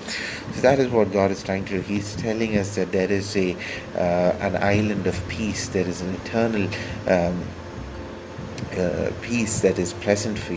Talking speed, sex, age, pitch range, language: 185 wpm, male, 30-49, 90-105 Hz, English